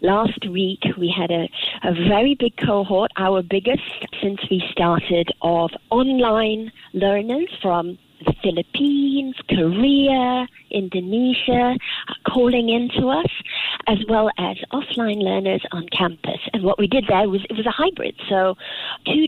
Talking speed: 135 wpm